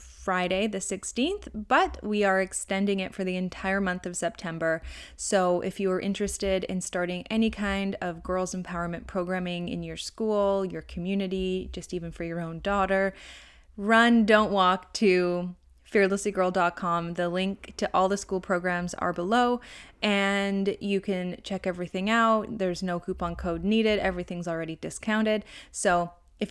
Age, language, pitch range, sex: 20-39, English, 175-200 Hz, female